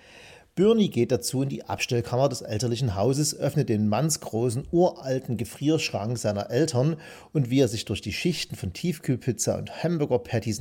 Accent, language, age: German, German, 40-59